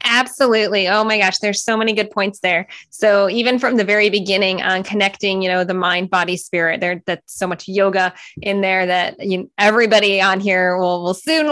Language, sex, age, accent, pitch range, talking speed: English, female, 20-39, American, 190-225 Hz, 210 wpm